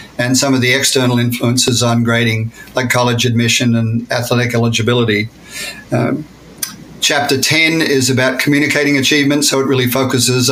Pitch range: 120-135 Hz